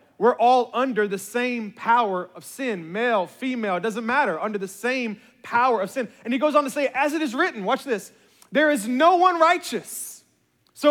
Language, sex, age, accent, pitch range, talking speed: English, male, 30-49, American, 225-290 Hz, 205 wpm